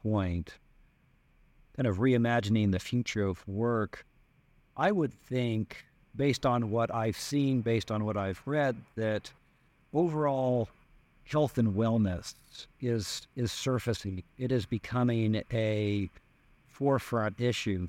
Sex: male